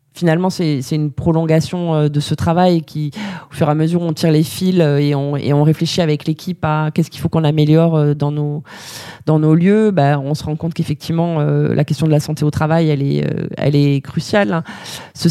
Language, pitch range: French, 145-165 Hz